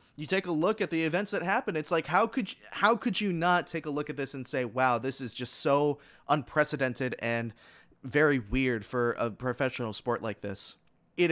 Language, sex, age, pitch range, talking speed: English, male, 20-39, 120-165 Hz, 215 wpm